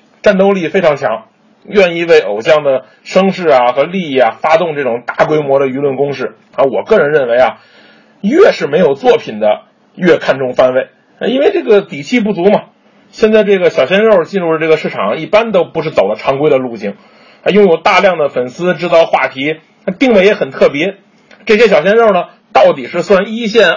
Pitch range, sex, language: 165-225 Hz, male, Chinese